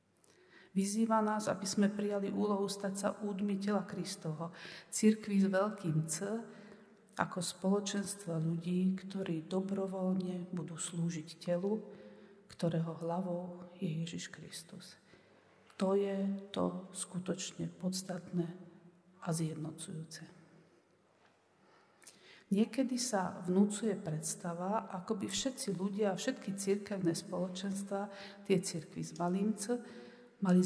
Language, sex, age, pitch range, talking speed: Slovak, female, 50-69, 170-200 Hz, 100 wpm